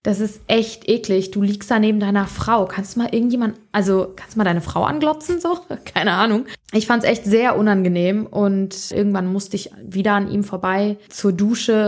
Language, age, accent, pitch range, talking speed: German, 20-39, German, 185-210 Hz, 200 wpm